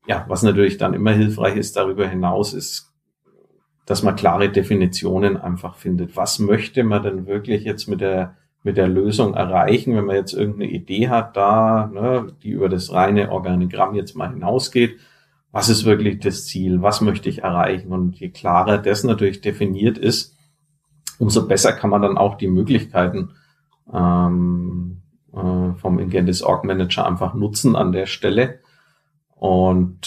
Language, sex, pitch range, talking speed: German, male, 95-115 Hz, 160 wpm